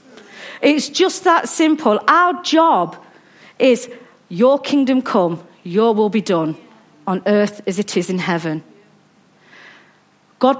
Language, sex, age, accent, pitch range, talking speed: English, female, 40-59, British, 200-285 Hz, 125 wpm